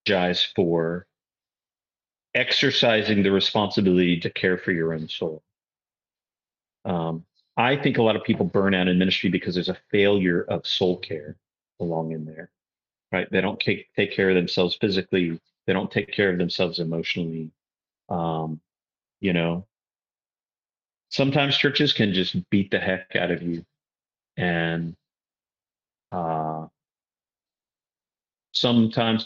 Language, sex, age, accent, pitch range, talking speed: English, male, 40-59, American, 90-115 Hz, 130 wpm